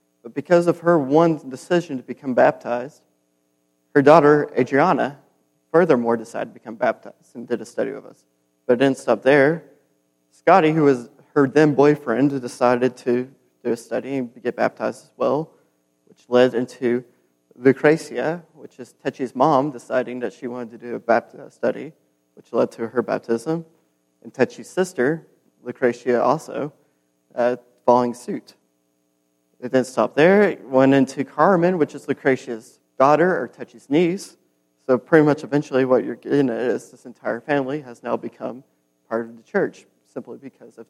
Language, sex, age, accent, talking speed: English, male, 30-49, American, 160 wpm